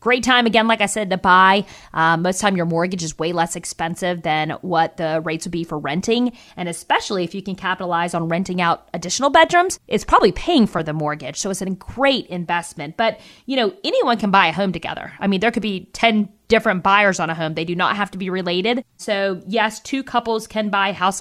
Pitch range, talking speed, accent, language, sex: 180-215 Hz, 240 wpm, American, English, female